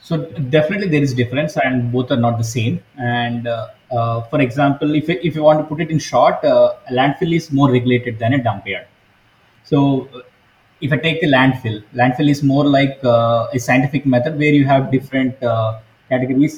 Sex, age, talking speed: male, 20-39, 200 wpm